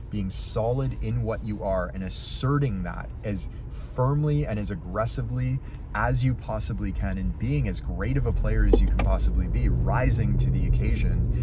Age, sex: 30-49, male